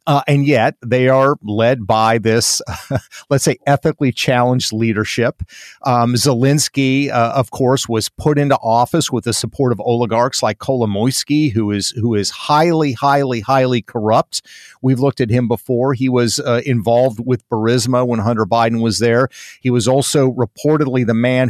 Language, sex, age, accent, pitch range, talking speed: English, male, 50-69, American, 120-145 Hz, 165 wpm